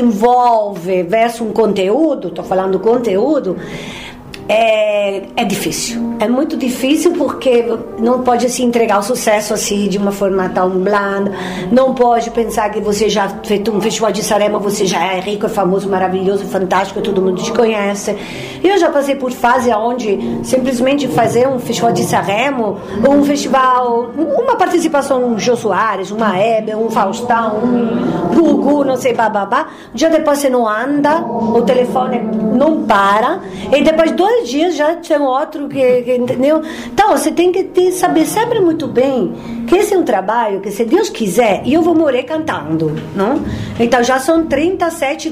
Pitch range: 210-285 Hz